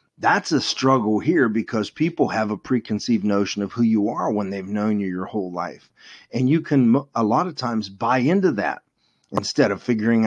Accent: American